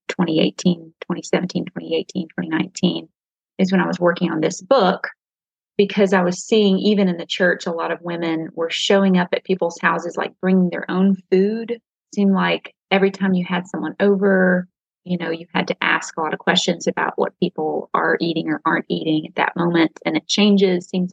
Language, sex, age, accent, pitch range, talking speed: English, female, 30-49, American, 165-195 Hz, 195 wpm